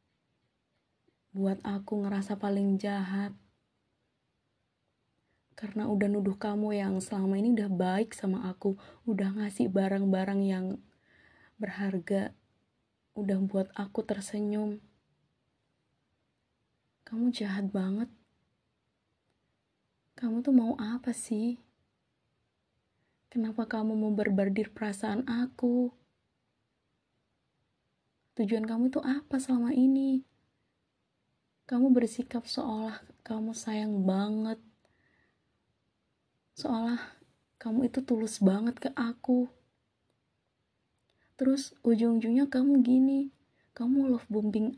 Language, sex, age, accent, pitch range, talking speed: Indonesian, female, 20-39, native, 200-245 Hz, 85 wpm